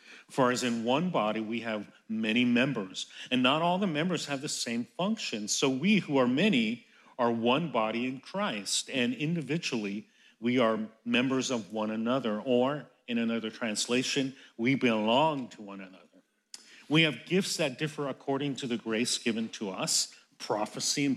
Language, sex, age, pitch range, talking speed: English, male, 50-69, 110-150 Hz, 165 wpm